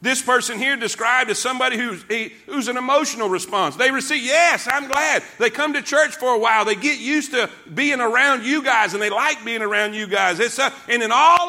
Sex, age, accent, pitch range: male, 50-69, American, 225-295 Hz